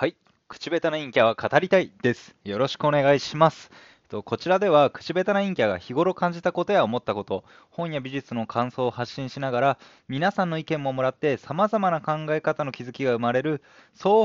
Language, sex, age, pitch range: Japanese, male, 20-39, 110-170 Hz